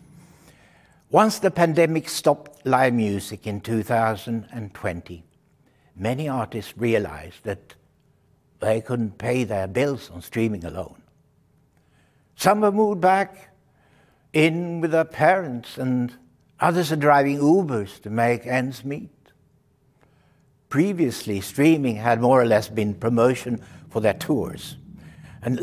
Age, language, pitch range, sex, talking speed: 60-79, Arabic, 115-155 Hz, male, 115 wpm